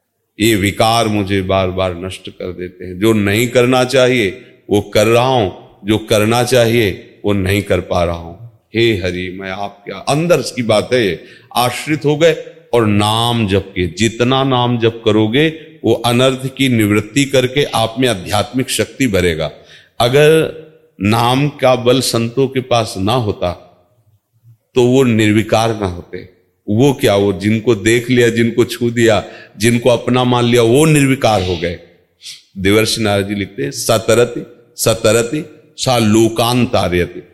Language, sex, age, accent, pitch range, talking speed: Hindi, male, 40-59, native, 100-130 Hz, 145 wpm